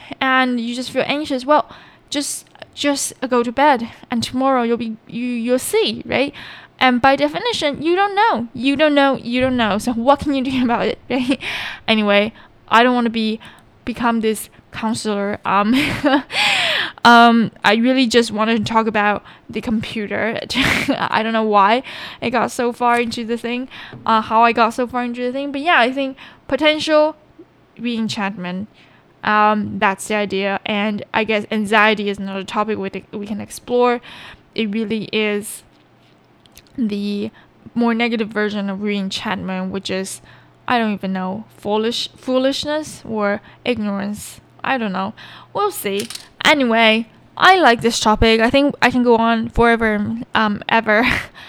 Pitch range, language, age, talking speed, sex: 215-255 Hz, English, 10-29, 160 wpm, female